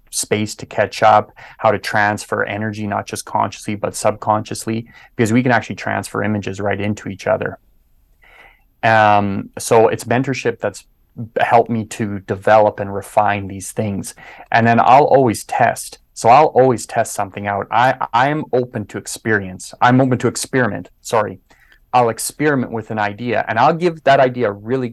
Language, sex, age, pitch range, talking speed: English, male, 30-49, 105-120 Hz, 165 wpm